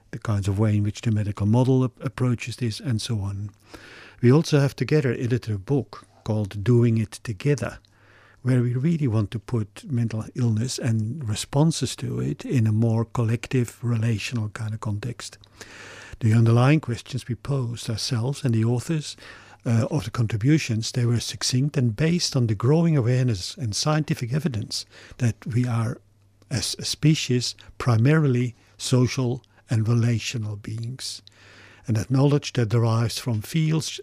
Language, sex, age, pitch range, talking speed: English, male, 50-69, 110-135 Hz, 155 wpm